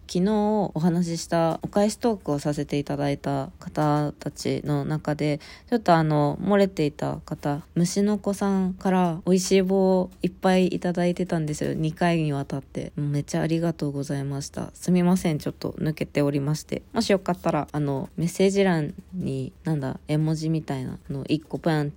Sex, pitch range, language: female, 145-180 Hz, Japanese